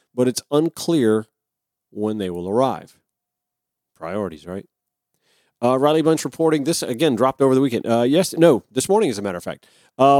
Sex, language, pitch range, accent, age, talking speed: male, English, 115-150 Hz, American, 40-59, 175 wpm